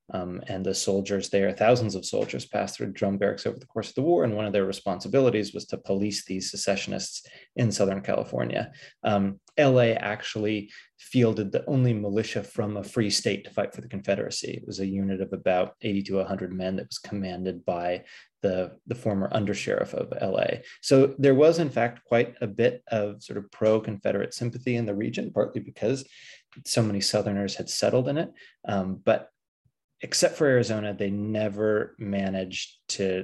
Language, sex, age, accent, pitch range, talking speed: English, male, 20-39, American, 95-110 Hz, 185 wpm